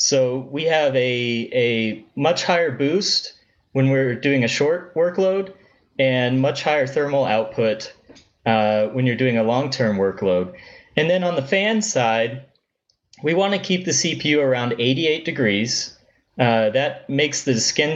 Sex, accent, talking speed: male, American, 155 wpm